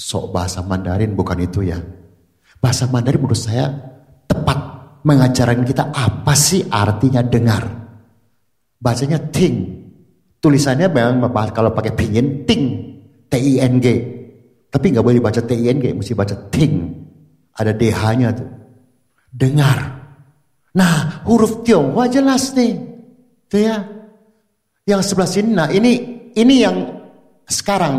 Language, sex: Indonesian, male